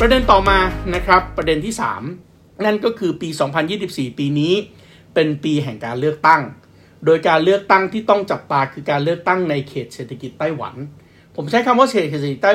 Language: Thai